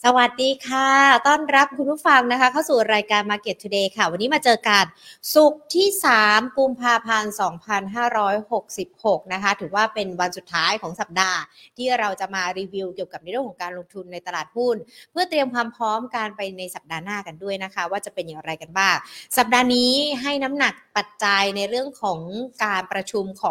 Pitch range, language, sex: 195-250 Hz, Thai, female